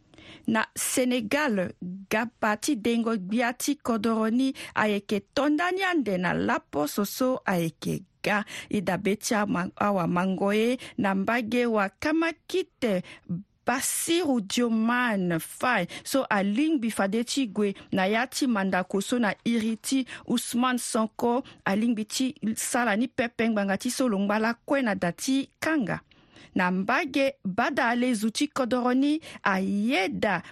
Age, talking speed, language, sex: 50-69, 100 wpm, French, female